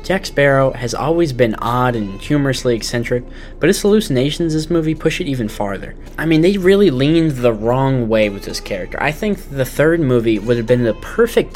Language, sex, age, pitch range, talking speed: English, male, 10-29, 115-155 Hz, 205 wpm